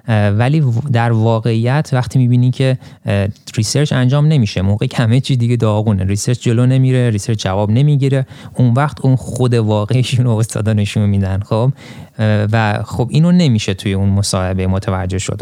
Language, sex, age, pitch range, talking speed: Persian, male, 30-49, 105-135 Hz, 150 wpm